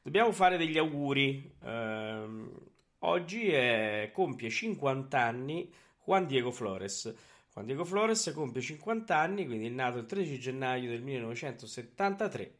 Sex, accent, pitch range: male, native, 115-150 Hz